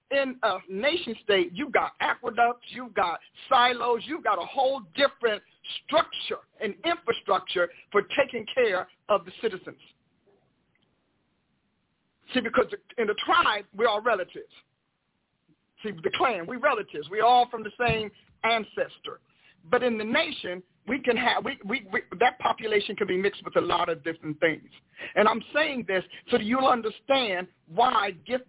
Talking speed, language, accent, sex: 145 wpm, English, American, male